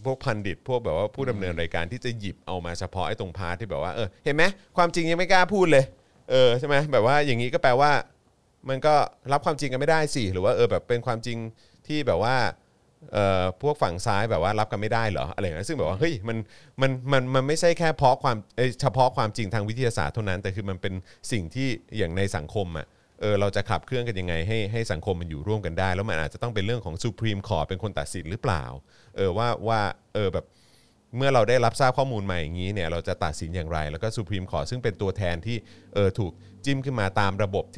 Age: 30-49